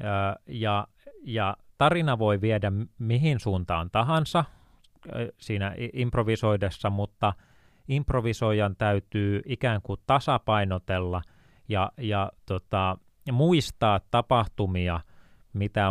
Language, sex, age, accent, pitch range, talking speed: Finnish, male, 30-49, native, 90-110 Hz, 80 wpm